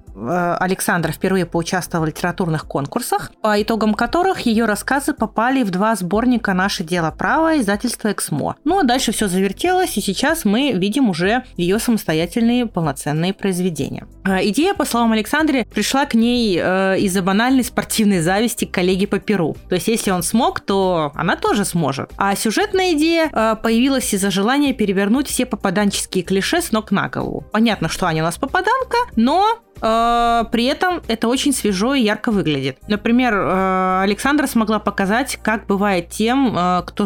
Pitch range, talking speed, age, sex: 185-240 Hz, 155 wpm, 30-49, female